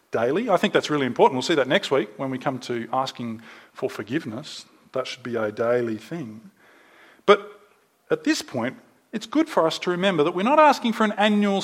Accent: Australian